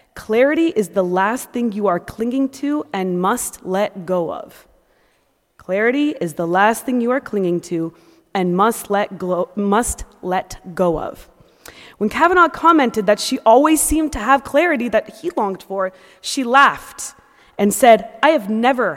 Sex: female